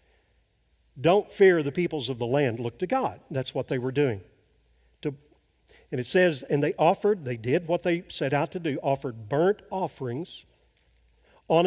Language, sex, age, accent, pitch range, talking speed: English, male, 50-69, American, 120-175 Hz, 175 wpm